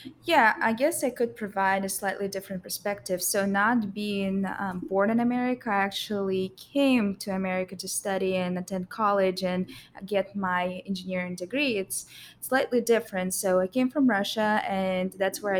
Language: English